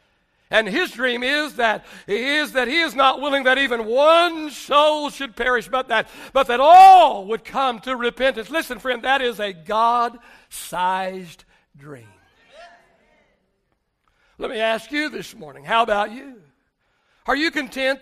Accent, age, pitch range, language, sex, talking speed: American, 60-79, 215-280 Hz, English, male, 150 wpm